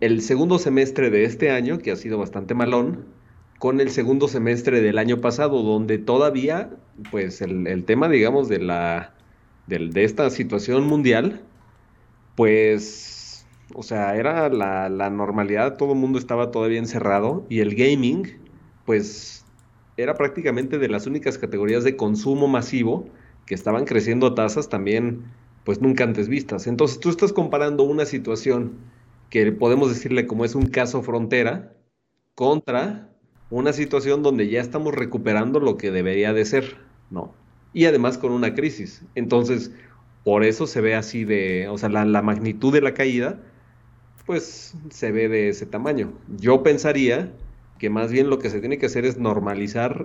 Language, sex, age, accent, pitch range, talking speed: Spanish, male, 30-49, Mexican, 110-130 Hz, 160 wpm